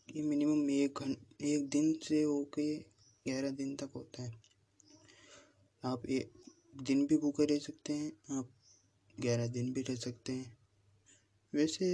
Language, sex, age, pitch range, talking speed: Hindi, male, 20-39, 115-155 Hz, 150 wpm